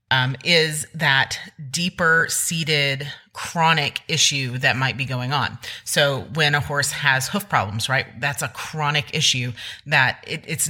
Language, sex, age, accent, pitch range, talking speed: English, female, 30-49, American, 130-160 Hz, 145 wpm